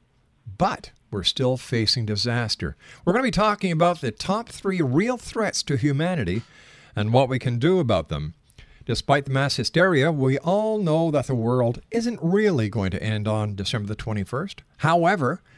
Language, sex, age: English, male, 50-69